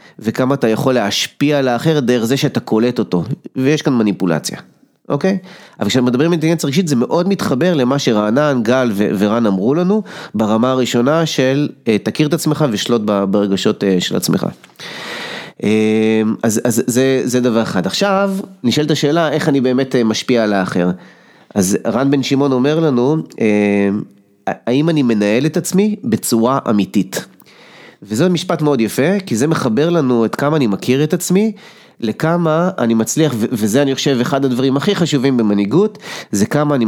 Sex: male